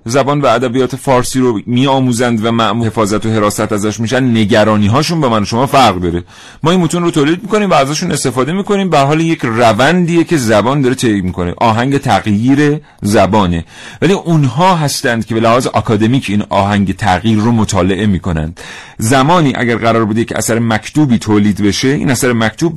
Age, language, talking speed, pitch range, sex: 40-59, Persian, 180 wpm, 100-135 Hz, male